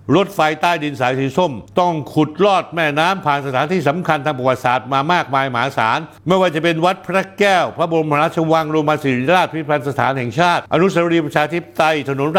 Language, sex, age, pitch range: Thai, male, 60-79, 125-165 Hz